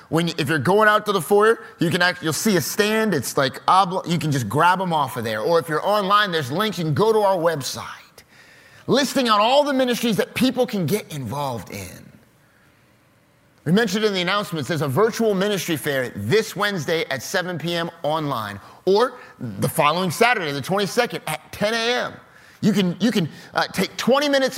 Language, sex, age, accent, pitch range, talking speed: English, male, 30-49, American, 160-225 Hz, 205 wpm